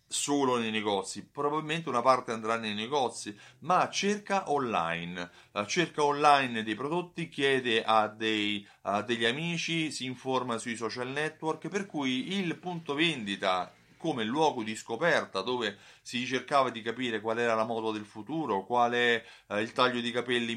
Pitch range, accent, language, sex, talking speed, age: 110-150 Hz, native, Italian, male, 150 wpm, 30-49